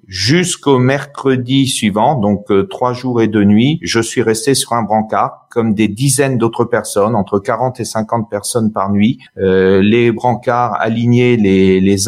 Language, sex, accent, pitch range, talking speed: French, male, French, 100-125 Hz, 170 wpm